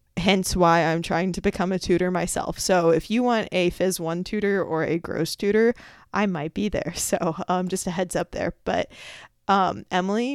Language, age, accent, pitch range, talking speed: English, 20-39, American, 170-200 Hz, 205 wpm